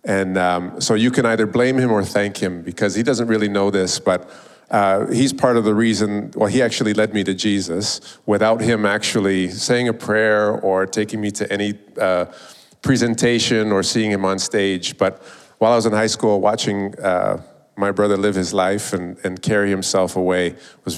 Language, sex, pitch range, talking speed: English, male, 95-110 Hz, 195 wpm